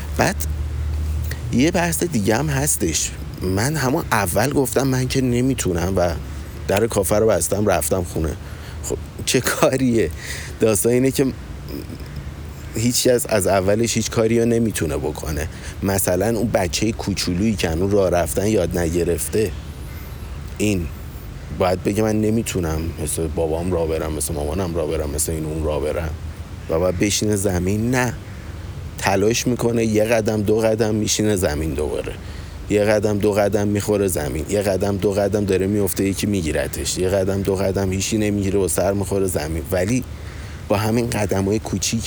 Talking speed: 150 wpm